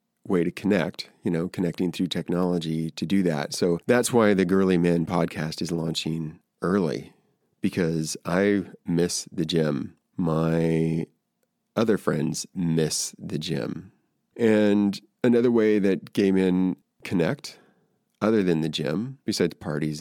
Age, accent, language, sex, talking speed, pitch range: 30-49, American, English, male, 135 wpm, 80-100 Hz